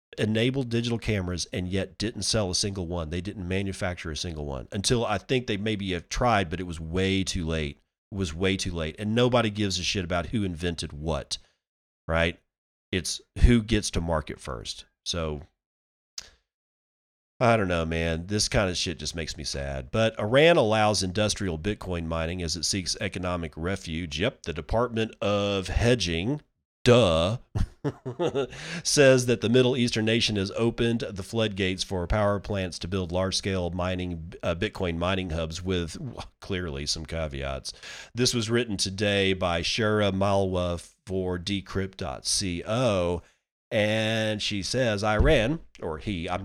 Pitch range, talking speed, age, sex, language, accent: 90-110 Hz, 155 wpm, 40-59, male, English, American